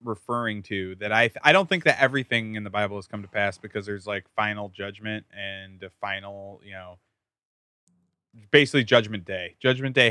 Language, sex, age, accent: English, male, 20-39, American